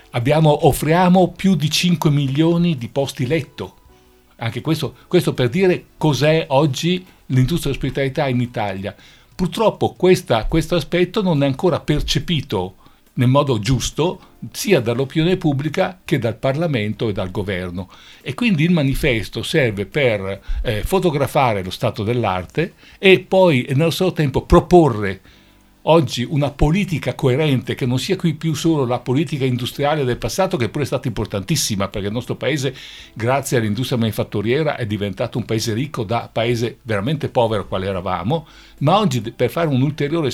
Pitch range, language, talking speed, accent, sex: 115-160 Hz, Italian, 145 wpm, native, male